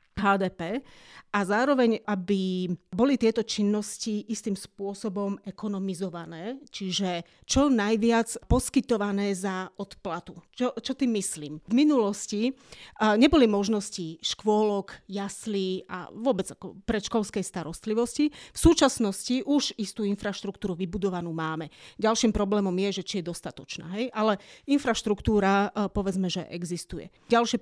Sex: female